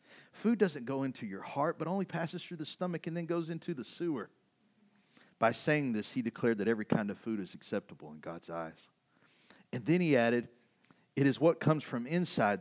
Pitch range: 95-140 Hz